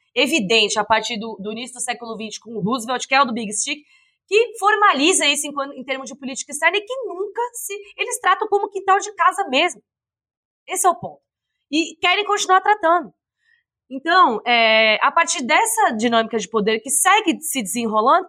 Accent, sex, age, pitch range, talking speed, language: Brazilian, female, 20-39, 235-360 Hz, 190 wpm, Portuguese